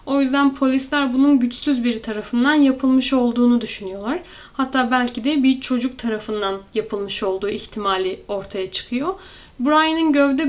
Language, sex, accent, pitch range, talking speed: Turkish, female, native, 235-290 Hz, 130 wpm